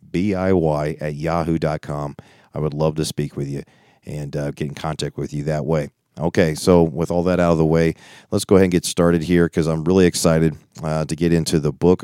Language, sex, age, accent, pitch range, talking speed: English, male, 40-59, American, 75-90 Hz, 225 wpm